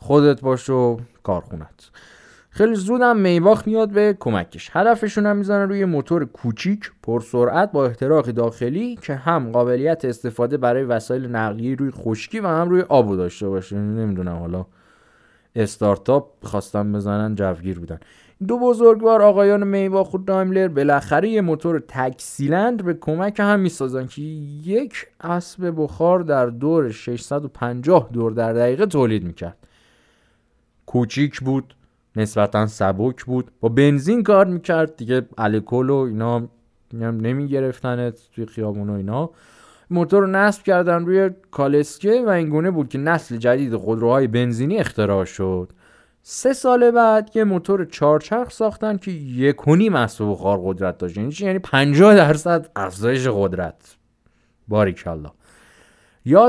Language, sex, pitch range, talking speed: Persian, male, 115-190 Hz, 130 wpm